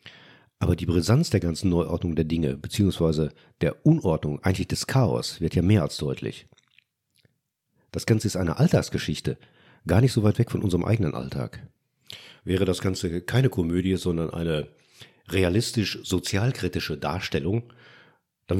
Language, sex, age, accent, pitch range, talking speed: German, male, 40-59, German, 90-115 Hz, 140 wpm